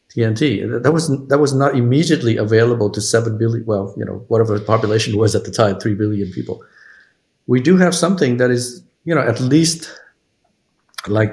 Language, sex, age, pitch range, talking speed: English, male, 50-69, 105-130 Hz, 185 wpm